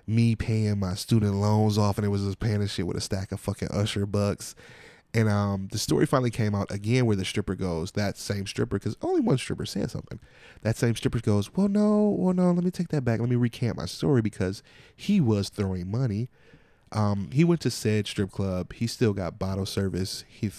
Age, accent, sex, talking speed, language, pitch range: 20-39, American, male, 230 wpm, English, 100-125 Hz